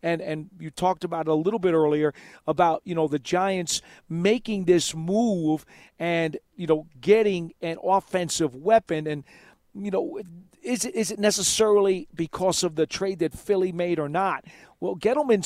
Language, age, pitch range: English, 40-59, 170-225 Hz